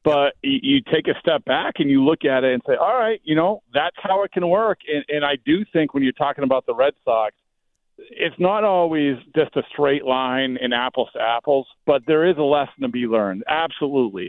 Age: 40-59